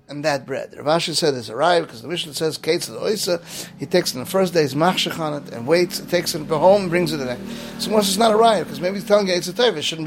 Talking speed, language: 275 wpm, English